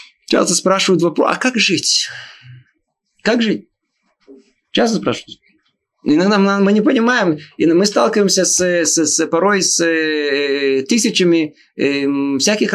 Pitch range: 165-240 Hz